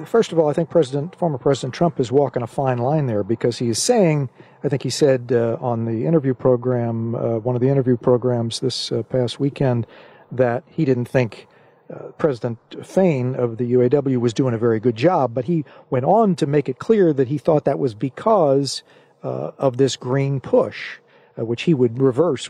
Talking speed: 210 wpm